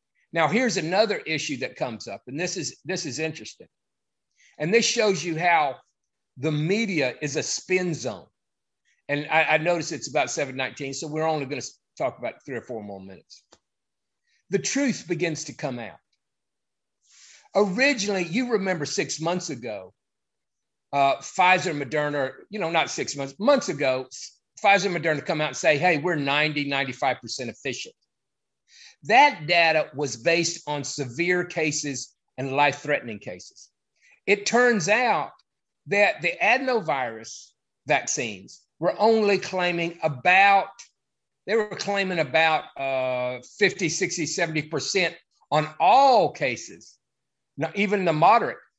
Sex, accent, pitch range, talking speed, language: male, American, 145-195 Hz, 140 wpm, English